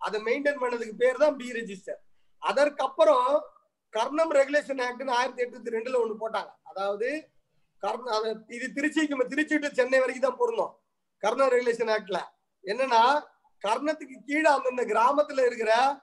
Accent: native